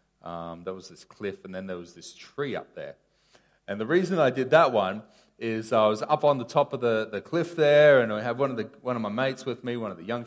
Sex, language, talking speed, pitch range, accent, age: male, English, 280 wpm, 100-135 Hz, Australian, 30-49